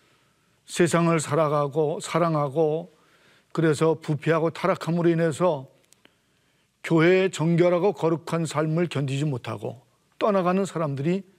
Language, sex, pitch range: Korean, male, 150-185 Hz